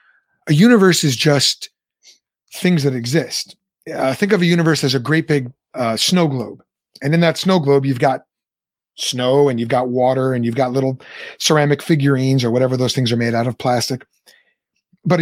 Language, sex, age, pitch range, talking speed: English, male, 30-49, 130-170 Hz, 185 wpm